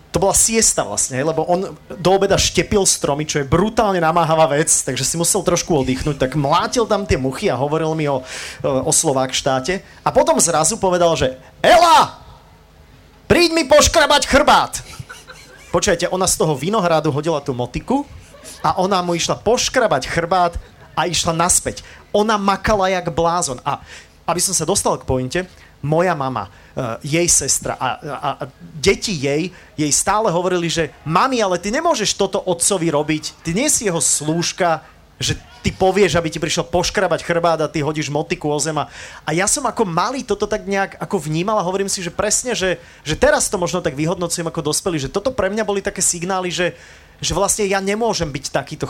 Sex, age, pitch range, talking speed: male, 30-49, 155-195 Hz, 180 wpm